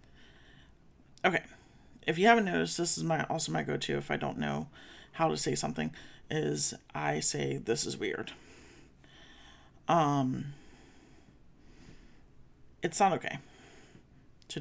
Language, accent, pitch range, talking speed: English, American, 130-160 Hz, 125 wpm